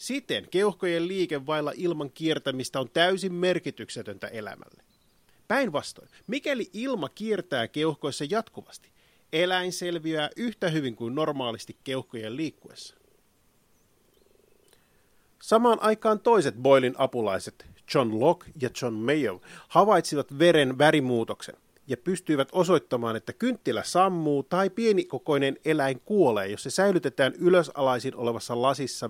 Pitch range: 130-185 Hz